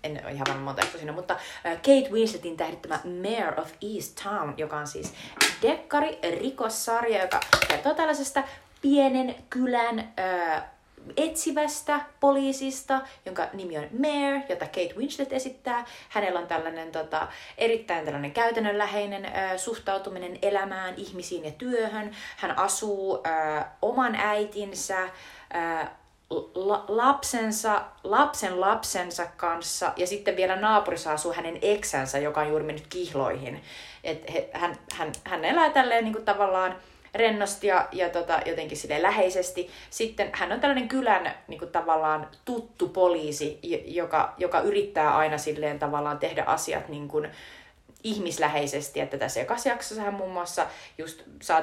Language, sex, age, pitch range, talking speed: Finnish, female, 30-49, 160-225 Hz, 130 wpm